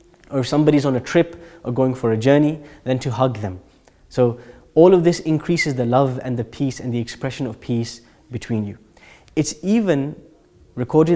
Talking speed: 190 wpm